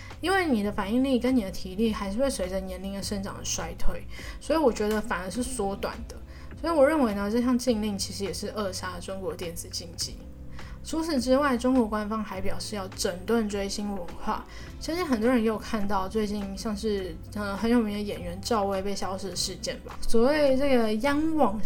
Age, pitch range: 10-29, 210-250 Hz